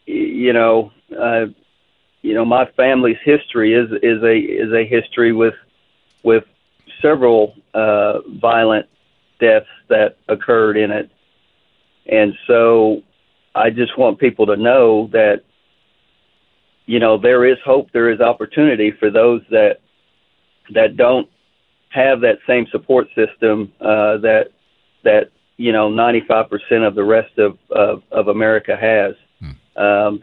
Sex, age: male, 40-59